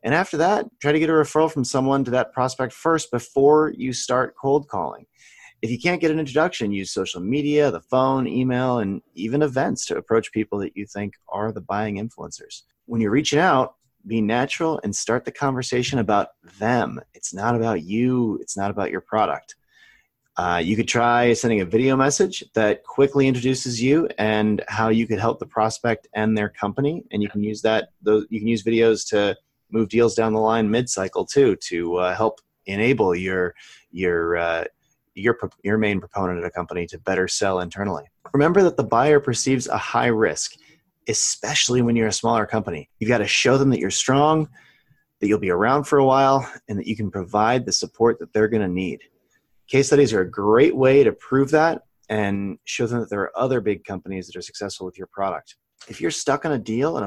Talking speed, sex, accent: 200 wpm, male, American